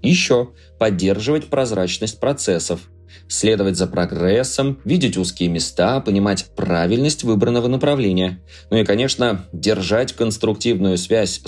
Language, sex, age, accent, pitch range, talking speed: Russian, male, 20-39, native, 90-120 Hz, 105 wpm